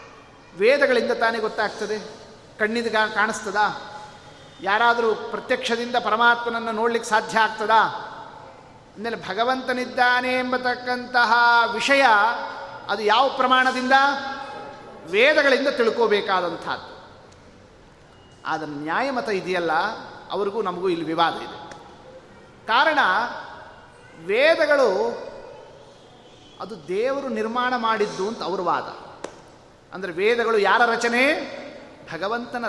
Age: 30-49